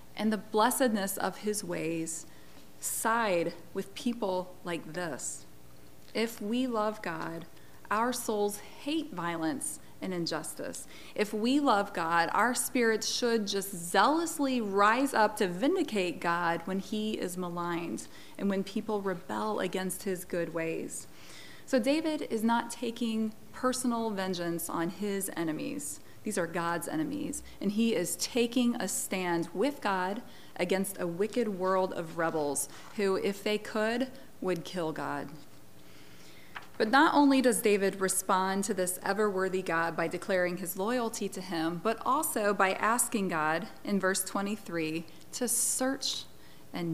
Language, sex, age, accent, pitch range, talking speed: English, female, 30-49, American, 170-230 Hz, 140 wpm